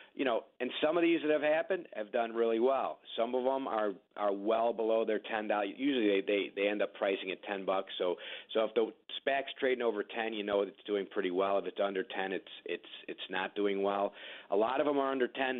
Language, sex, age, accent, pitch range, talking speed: English, male, 40-59, American, 100-120 Hz, 245 wpm